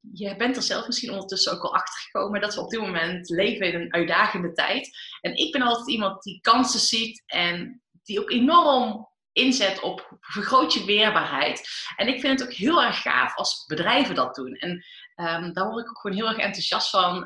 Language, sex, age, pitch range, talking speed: Dutch, female, 20-39, 180-250 Hz, 210 wpm